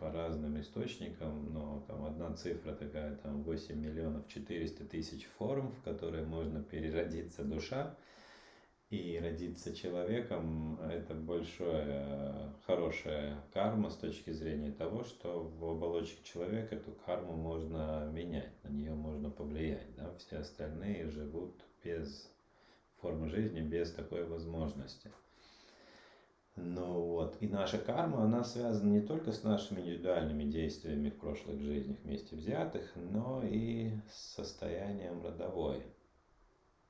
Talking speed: 120 wpm